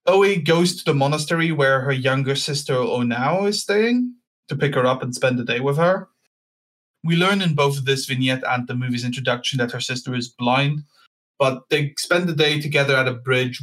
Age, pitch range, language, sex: 20-39, 125-155 Hz, English, male